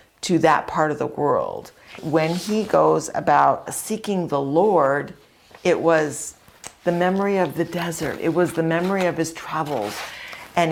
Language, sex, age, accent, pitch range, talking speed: English, female, 50-69, American, 135-175 Hz, 155 wpm